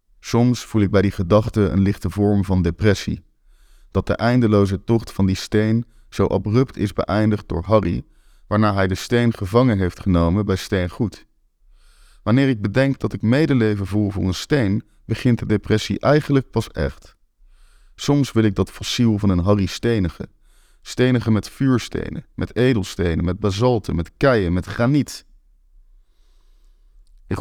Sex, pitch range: male, 85-115 Hz